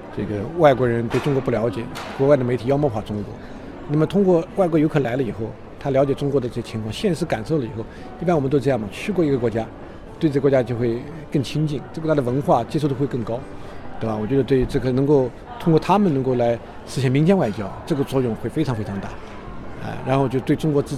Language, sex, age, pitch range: Chinese, male, 50-69, 115-155 Hz